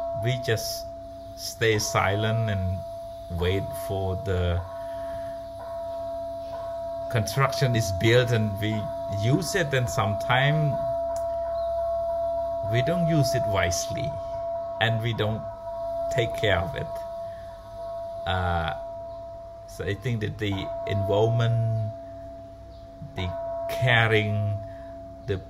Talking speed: 90 wpm